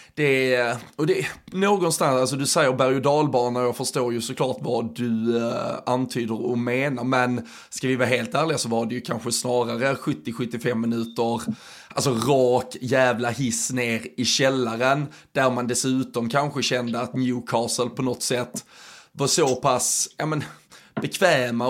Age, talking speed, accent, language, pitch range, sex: 20-39, 160 wpm, native, Swedish, 125-145 Hz, male